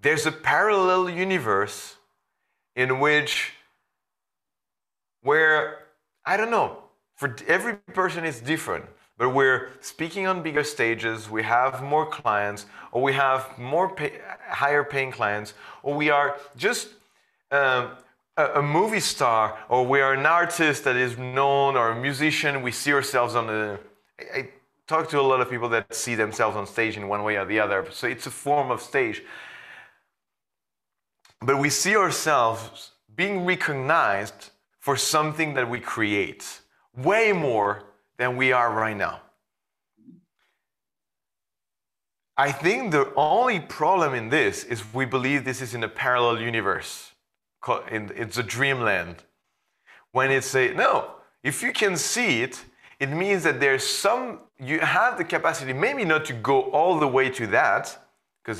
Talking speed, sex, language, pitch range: 150 wpm, male, English, 115-150 Hz